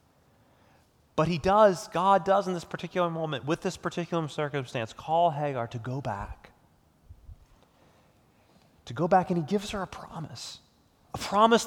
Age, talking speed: 30-49, 150 wpm